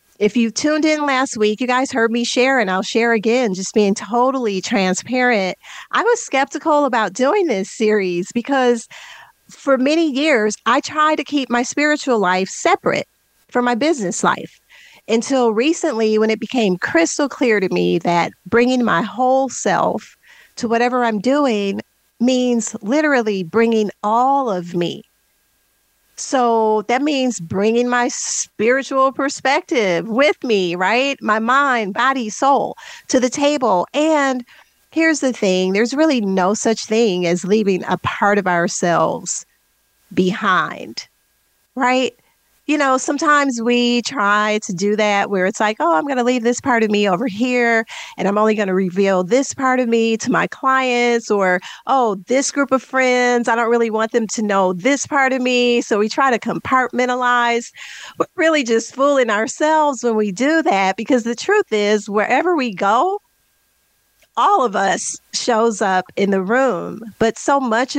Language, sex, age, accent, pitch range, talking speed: English, female, 40-59, American, 210-265 Hz, 160 wpm